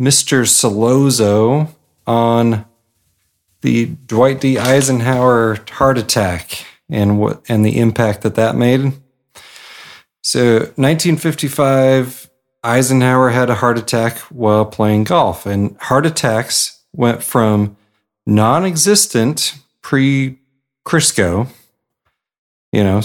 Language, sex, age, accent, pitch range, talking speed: English, male, 40-59, American, 110-145 Hz, 95 wpm